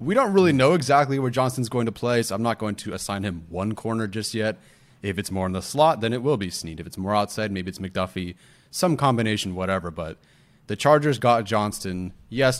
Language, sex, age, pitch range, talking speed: English, male, 30-49, 95-125 Hz, 230 wpm